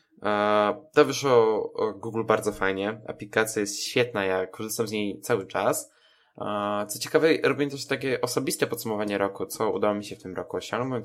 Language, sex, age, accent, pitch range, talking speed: Polish, male, 20-39, native, 105-145 Hz, 180 wpm